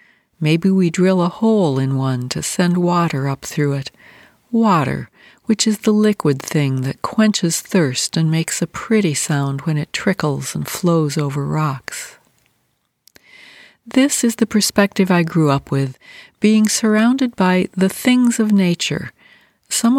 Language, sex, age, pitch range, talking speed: English, female, 60-79, 155-215 Hz, 150 wpm